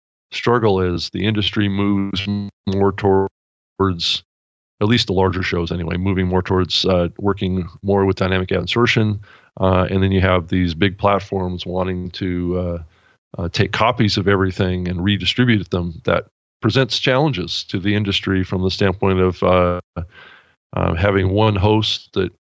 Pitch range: 90-100 Hz